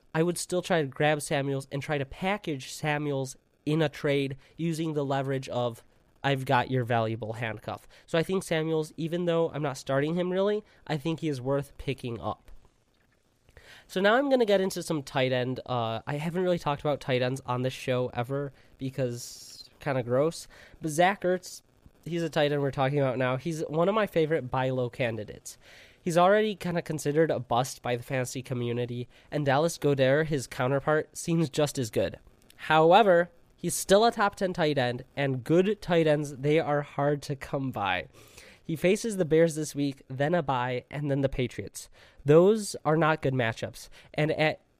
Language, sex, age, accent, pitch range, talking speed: English, male, 20-39, American, 130-165 Hz, 195 wpm